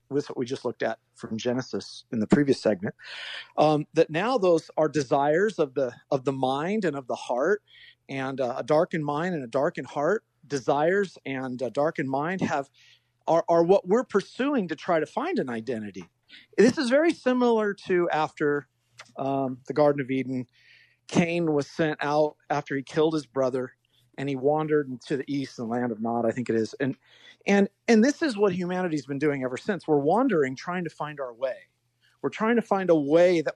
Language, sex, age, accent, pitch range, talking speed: English, male, 50-69, American, 135-195 Hz, 200 wpm